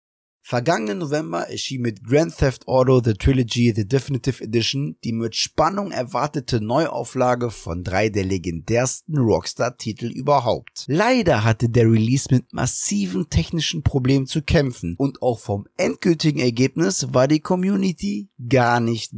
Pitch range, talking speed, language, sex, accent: 115-155 Hz, 140 wpm, German, male, German